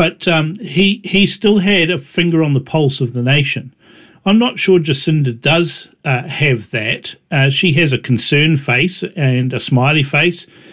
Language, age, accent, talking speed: English, 50-69, Australian, 180 wpm